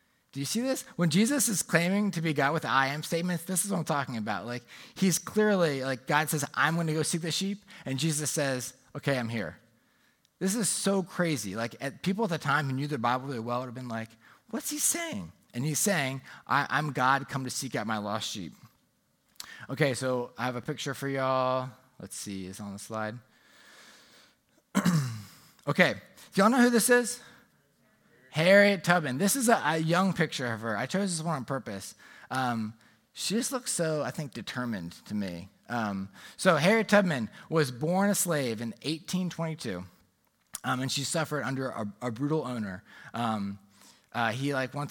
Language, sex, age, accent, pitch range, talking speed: English, male, 20-39, American, 115-170 Hz, 200 wpm